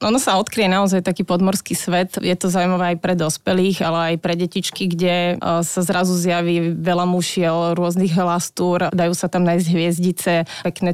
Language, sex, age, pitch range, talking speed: Slovak, female, 30-49, 180-195 Hz, 170 wpm